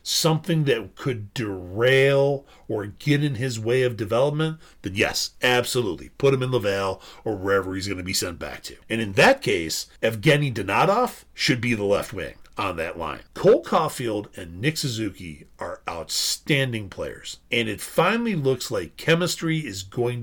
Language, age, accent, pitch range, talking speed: English, 40-59, American, 100-155 Hz, 170 wpm